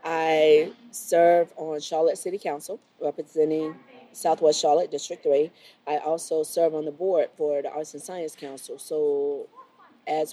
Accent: American